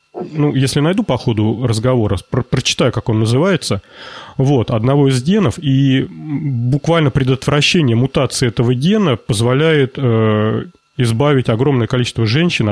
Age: 30-49